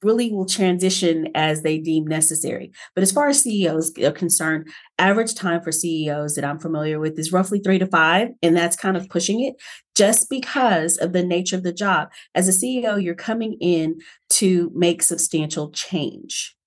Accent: American